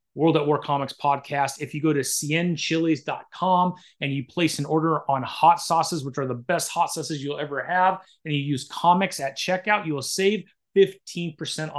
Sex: male